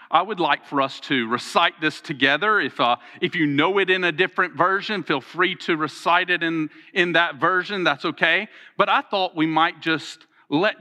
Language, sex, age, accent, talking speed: English, male, 40-59, American, 205 wpm